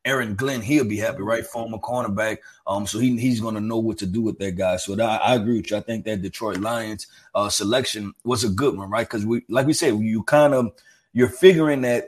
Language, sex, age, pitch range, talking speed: English, male, 30-49, 110-135 Hz, 245 wpm